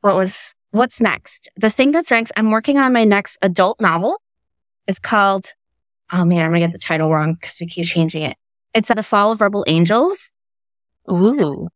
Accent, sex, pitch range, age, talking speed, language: American, female, 165-190 Hz, 20-39, 195 wpm, English